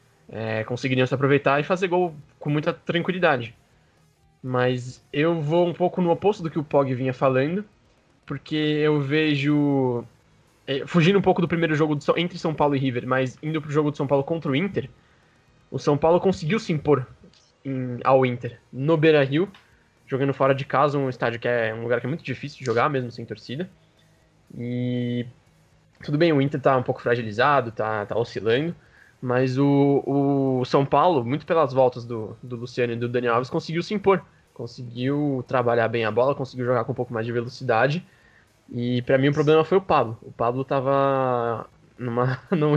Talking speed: 185 wpm